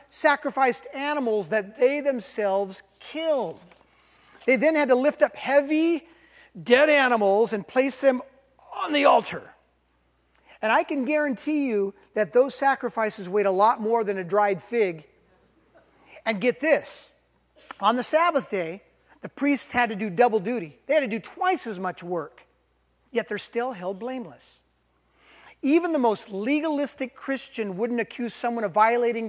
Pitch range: 190-270 Hz